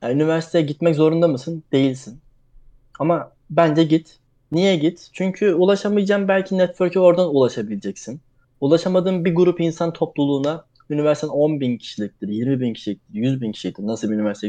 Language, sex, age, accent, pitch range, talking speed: Turkish, male, 20-39, native, 130-180 Hz, 145 wpm